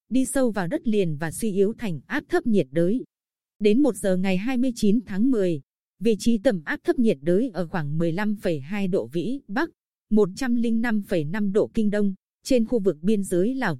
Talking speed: 185 wpm